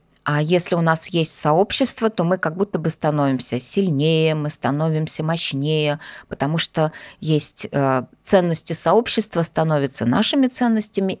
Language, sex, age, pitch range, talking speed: Russian, female, 20-39, 150-190 Hz, 130 wpm